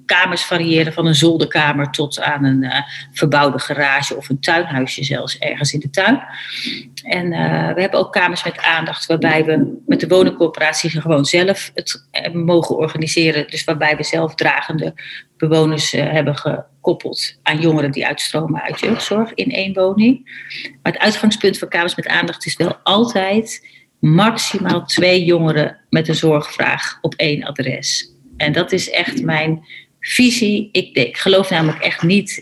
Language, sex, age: Dutch, female, 40-59